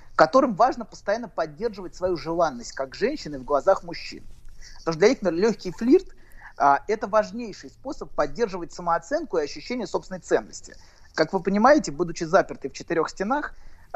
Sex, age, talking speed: male, 30-49, 155 wpm